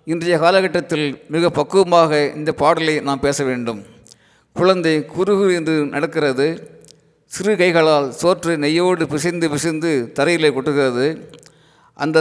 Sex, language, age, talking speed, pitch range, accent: male, Tamil, 50-69, 105 wpm, 140-165 Hz, native